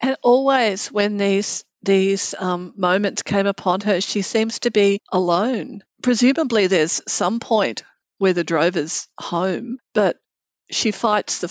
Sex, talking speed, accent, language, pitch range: female, 140 wpm, Australian, English, 180-215 Hz